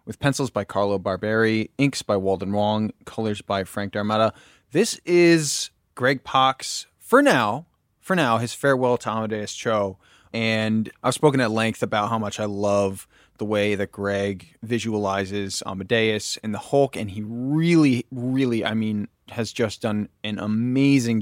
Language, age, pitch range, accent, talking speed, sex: English, 20-39, 100-120 Hz, American, 160 wpm, male